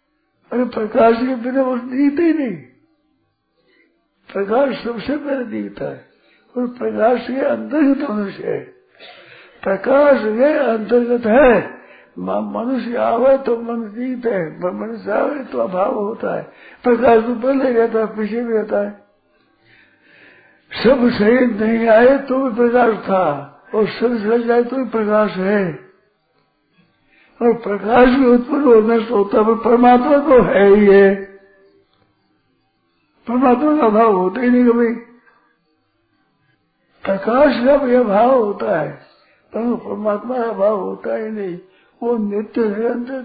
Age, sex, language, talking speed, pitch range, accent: 60-79, male, Hindi, 125 wpm, 205-255 Hz, native